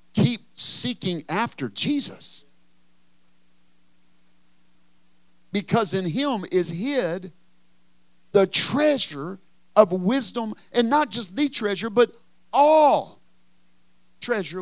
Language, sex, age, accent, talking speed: English, male, 50-69, American, 85 wpm